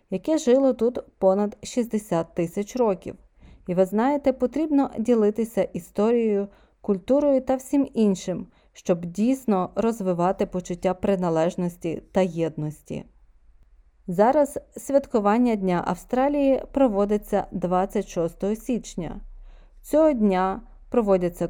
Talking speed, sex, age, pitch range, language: 95 wpm, female, 30-49, 180-240 Hz, Ukrainian